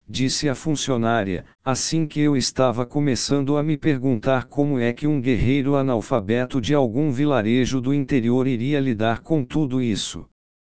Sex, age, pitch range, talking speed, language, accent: male, 60-79, 120-145 Hz, 150 wpm, Portuguese, Brazilian